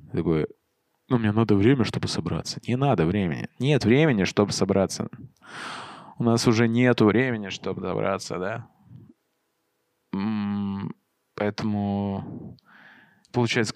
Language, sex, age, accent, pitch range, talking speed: Russian, male, 20-39, native, 95-110 Hz, 110 wpm